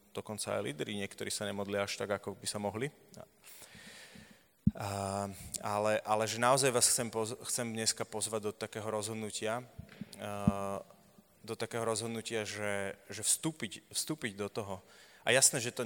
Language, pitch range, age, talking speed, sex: Slovak, 100-115 Hz, 20-39, 145 wpm, male